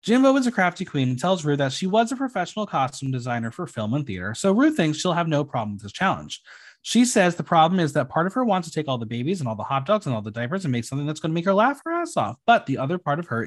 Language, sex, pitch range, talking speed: English, male, 125-200 Hz, 315 wpm